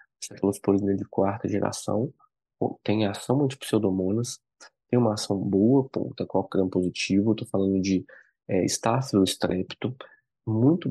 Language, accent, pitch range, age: English, Brazilian, 100-120 Hz, 20-39